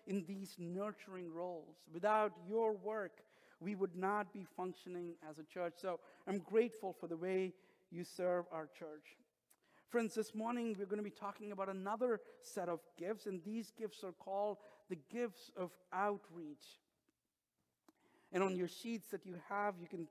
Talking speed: 165 wpm